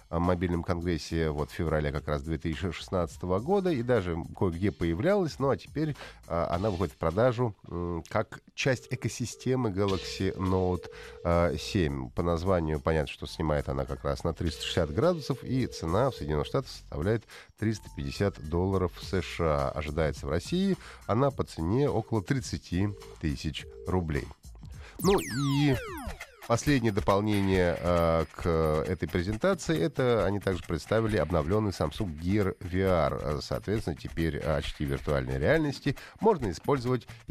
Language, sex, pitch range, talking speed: Russian, male, 75-110 Hz, 125 wpm